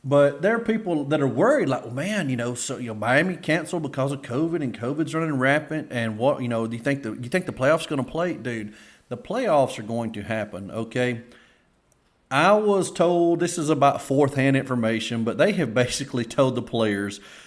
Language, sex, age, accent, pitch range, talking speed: English, male, 30-49, American, 115-145 Hz, 215 wpm